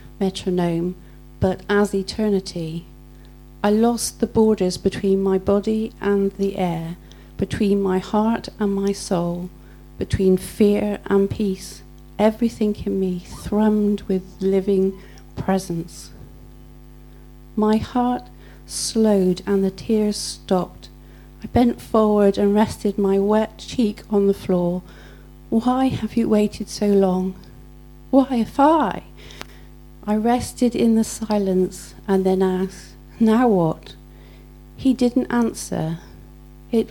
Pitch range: 185-220 Hz